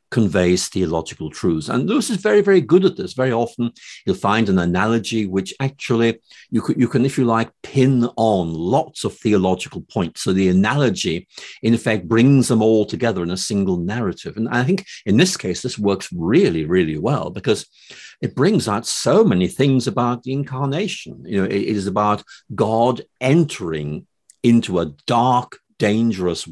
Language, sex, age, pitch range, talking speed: English, male, 50-69, 100-135 Hz, 175 wpm